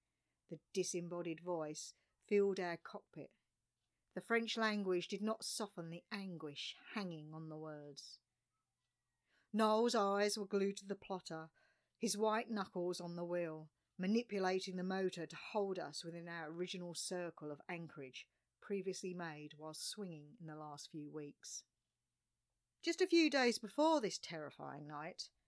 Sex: female